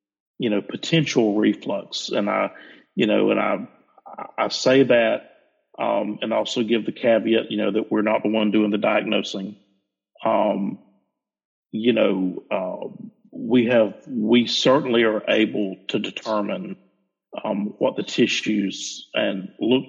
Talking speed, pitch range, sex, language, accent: 145 wpm, 100-120 Hz, male, English, American